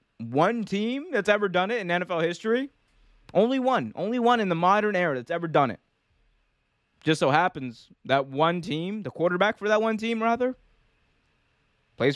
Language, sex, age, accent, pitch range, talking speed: English, male, 20-39, American, 140-200 Hz, 175 wpm